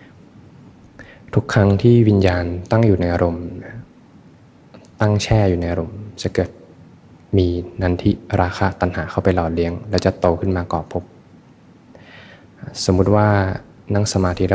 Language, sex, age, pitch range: Thai, male, 20-39, 90-100 Hz